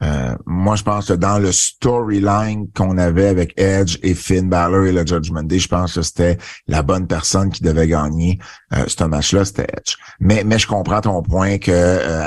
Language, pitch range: French, 90-110 Hz